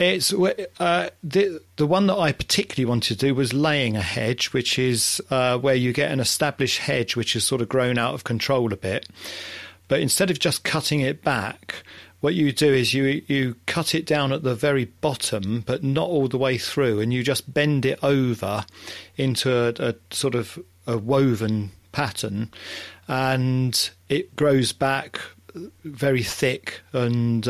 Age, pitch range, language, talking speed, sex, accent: 40-59, 115-140 Hz, English, 175 wpm, male, British